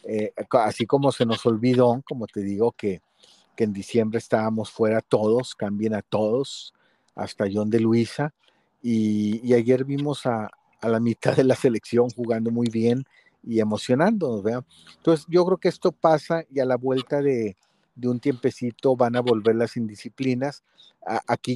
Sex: male